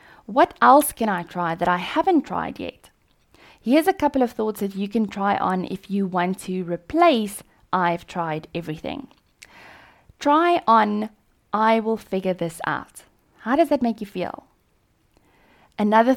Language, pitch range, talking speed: English, 175-235 Hz, 155 wpm